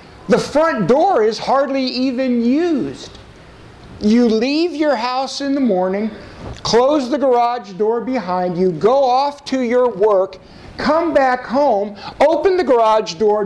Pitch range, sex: 215-275 Hz, male